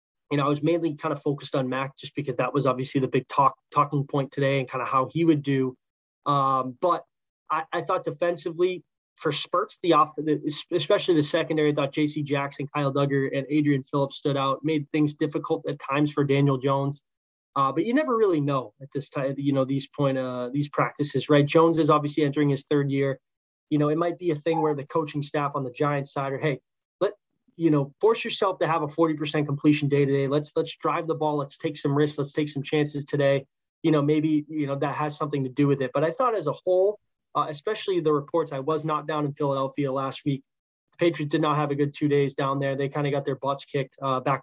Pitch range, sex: 135-155 Hz, male